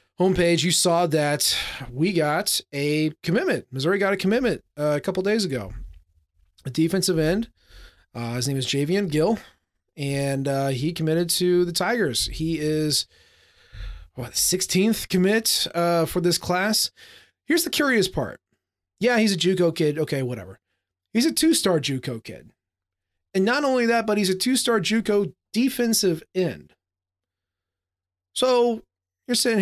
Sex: male